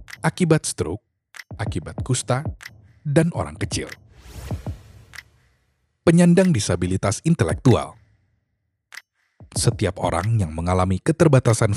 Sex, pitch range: male, 95-135 Hz